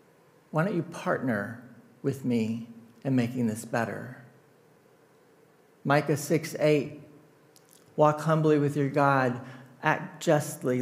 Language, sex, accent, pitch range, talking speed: English, male, American, 135-160 Hz, 105 wpm